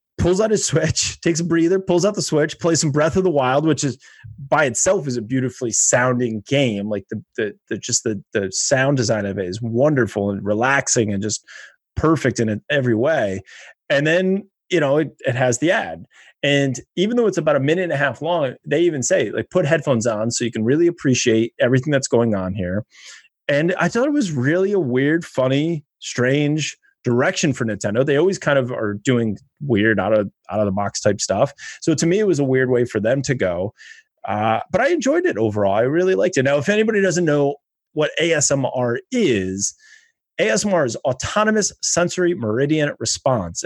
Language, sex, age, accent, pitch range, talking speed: English, male, 30-49, American, 115-170 Hz, 205 wpm